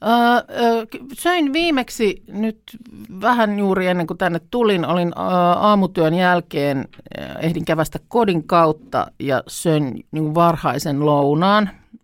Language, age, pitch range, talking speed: Finnish, 50-69, 140-180 Hz, 110 wpm